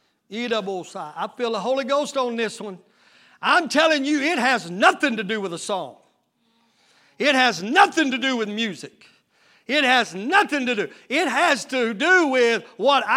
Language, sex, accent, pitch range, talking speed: English, male, American, 230-300 Hz, 180 wpm